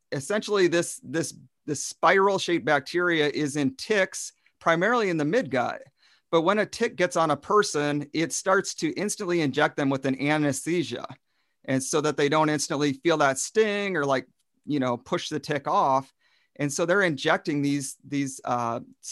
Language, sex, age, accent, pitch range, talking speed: English, male, 40-59, American, 135-175 Hz, 175 wpm